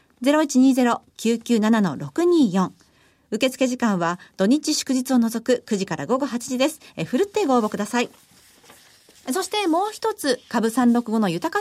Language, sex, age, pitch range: Japanese, female, 40-59, 205-305 Hz